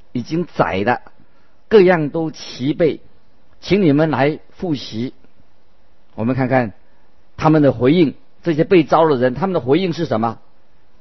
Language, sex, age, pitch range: Chinese, male, 50-69, 120-160 Hz